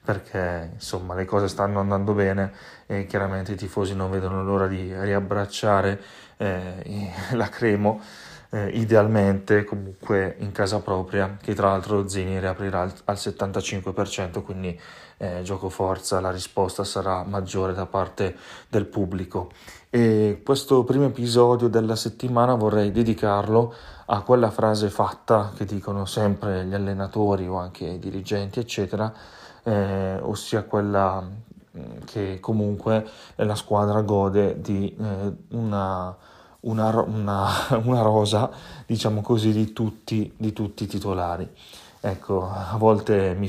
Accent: native